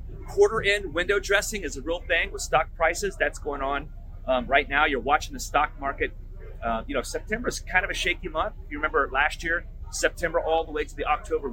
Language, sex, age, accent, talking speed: English, male, 30-49, American, 225 wpm